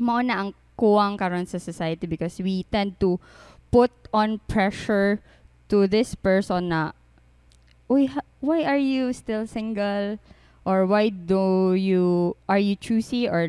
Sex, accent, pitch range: female, Filipino, 170-220 Hz